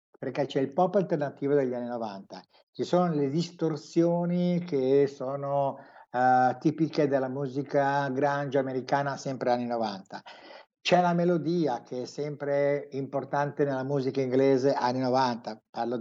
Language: Italian